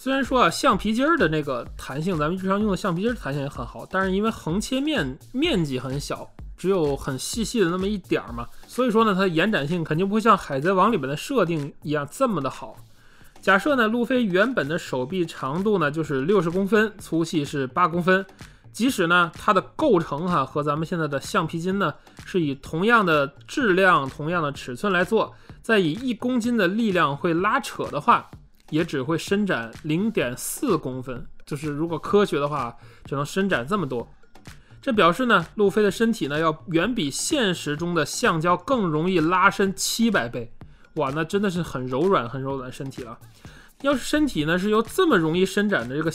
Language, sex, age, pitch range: Chinese, male, 20-39, 145-205 Hz